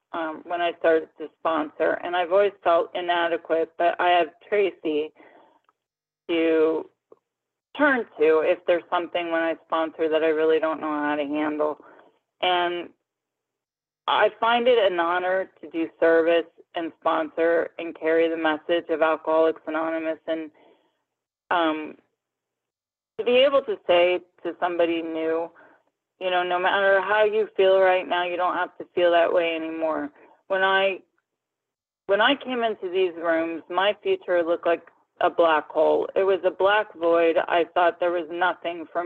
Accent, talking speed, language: American, 160 wpm, English